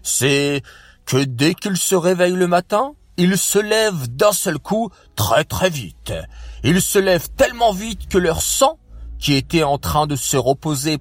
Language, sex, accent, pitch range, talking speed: French, male, French, 125-185 Hz, 175 wpm